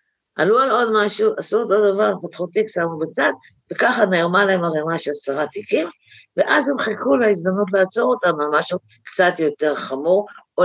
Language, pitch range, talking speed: Hebrew, 145-220 Hz, 165 wpm